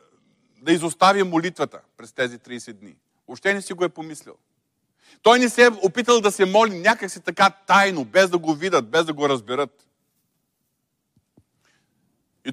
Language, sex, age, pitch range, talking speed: Bulgarian, male, 40-59, 130-185 Hz, 160 wpm